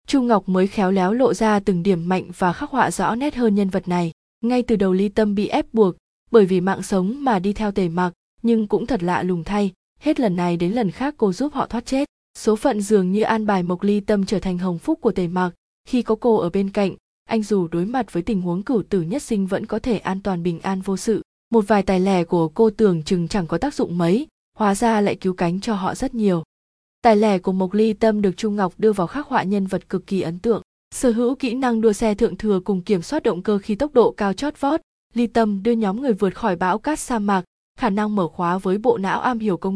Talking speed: 265 wpm